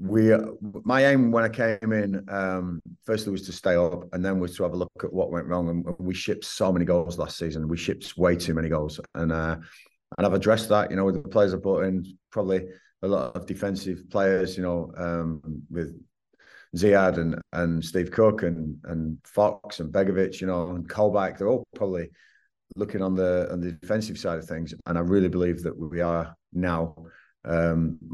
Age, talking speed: 30-49, 205 wpm